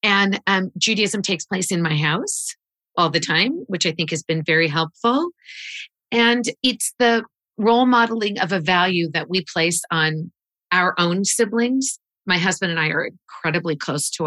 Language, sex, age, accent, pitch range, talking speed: English, female, 40-59, American, 165-210 Hz, 175 wpm